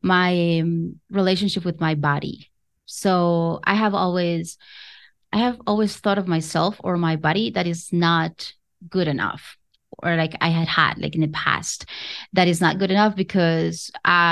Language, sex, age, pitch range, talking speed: English, female, 20-39, 165-200 Hz, 165 wpm